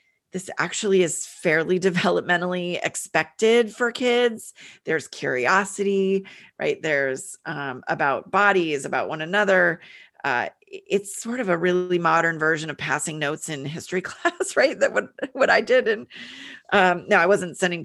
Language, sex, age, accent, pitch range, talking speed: English, female, 30-49, American, 155-200 Hz, 150 wpm